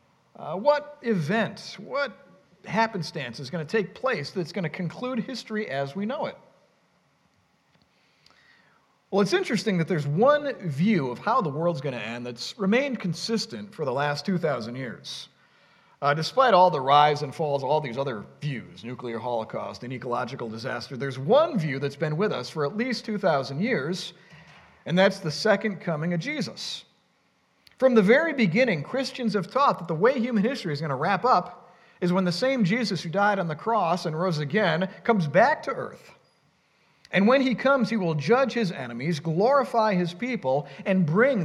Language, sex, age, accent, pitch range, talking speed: English, male, 40-59, American, 145-220 Hz, 180 wpm